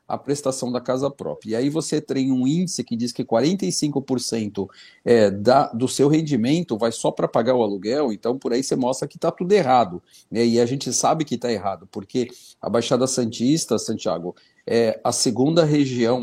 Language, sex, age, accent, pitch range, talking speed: Portuguese, male, 40-59, Brazilian, 115-145 Hz, 185 wpm